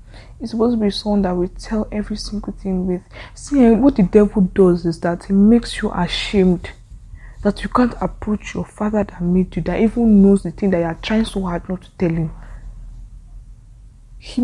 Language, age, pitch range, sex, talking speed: English, 20-39, 170-210 Hz, female, 200 wpm